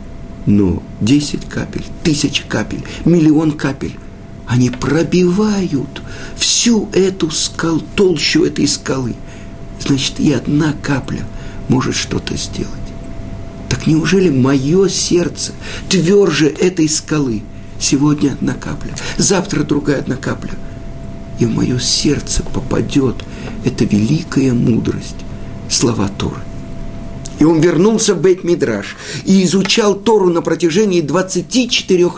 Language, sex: Russian, male